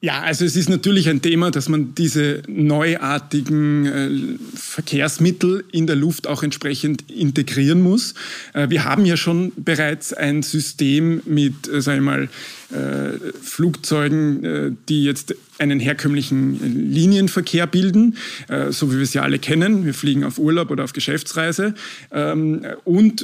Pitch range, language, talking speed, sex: 145-170 Hz, German, 145 wpm, male